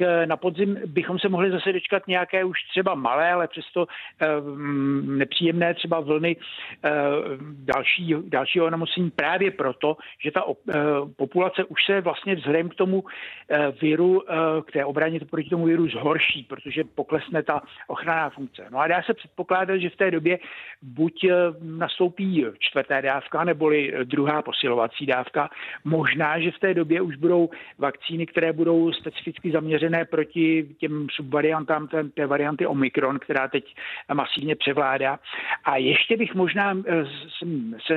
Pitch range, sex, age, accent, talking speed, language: 150-175 Hz, male, 60-79, native, 135 wpm, Czech